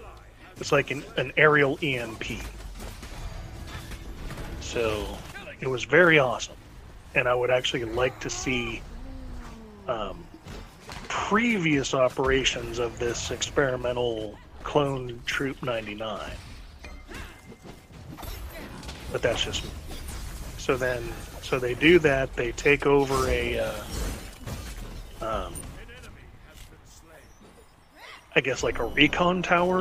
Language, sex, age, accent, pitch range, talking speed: English, male, 30-49, American, 95-140 Hz, 100 wpm